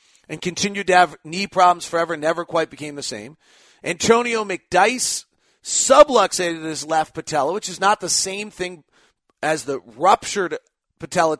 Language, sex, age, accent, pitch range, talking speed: English, male, 40-59, American, 160-195 Hz, 145 wpm